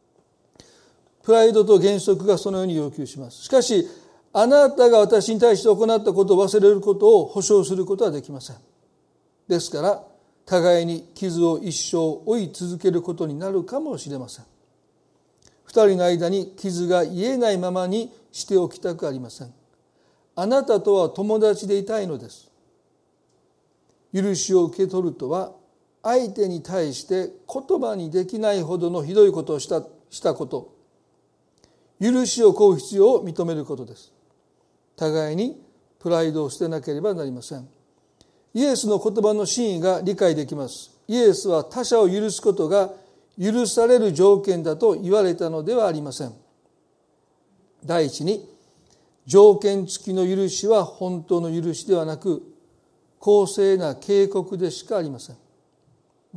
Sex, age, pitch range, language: male, 40-59, 170-220 Hz, Japanese